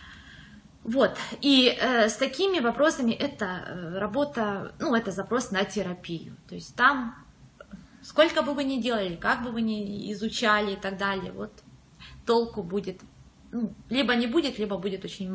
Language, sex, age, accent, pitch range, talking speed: Russian, female, 20-39, native, 195-260 Hz, 155 wpm